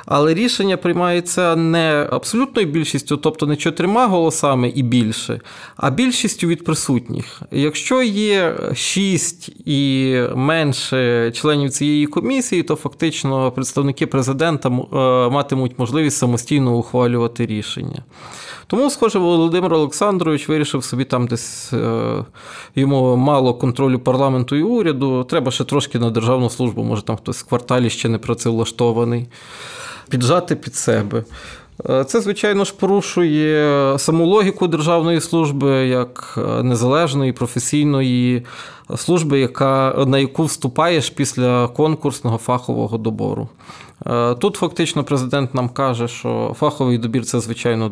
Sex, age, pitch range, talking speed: male, 20-39, 125-165 Hz, 120 wpm